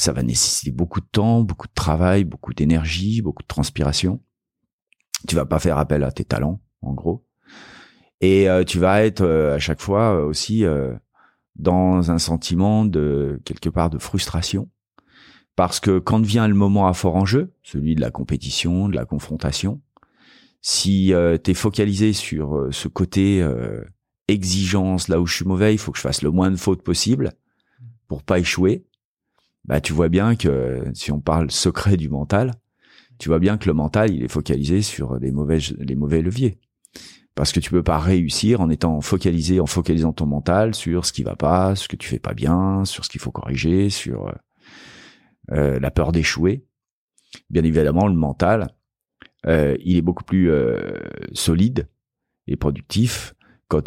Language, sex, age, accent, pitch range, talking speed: French, male, 40-59, French, 75-100 Hz, 185 wpm